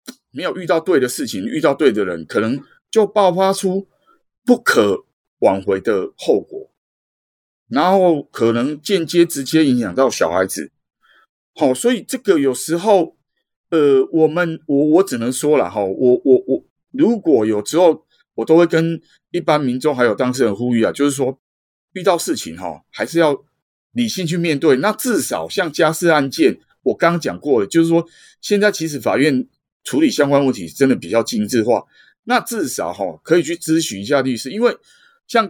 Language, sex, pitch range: Chinese, male, 125-195 Hz